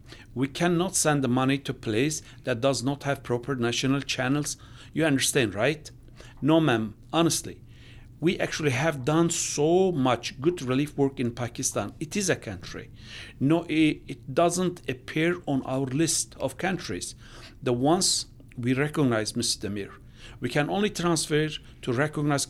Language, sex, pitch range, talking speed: English, male, 120-155 Hz, 150 wpm